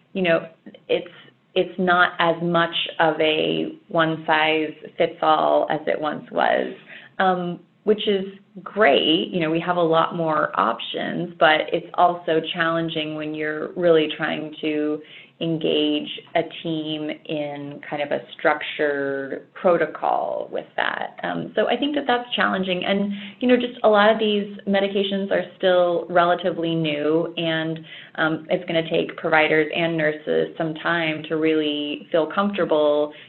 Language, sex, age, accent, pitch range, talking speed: English, female, 20-39, American, 155-175 Hz, 150 wpm